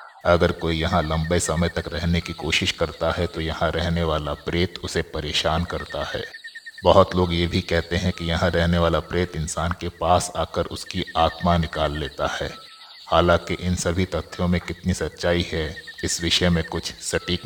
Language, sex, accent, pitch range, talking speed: Hindi, male, native, 85-95 Hz, 180 wpm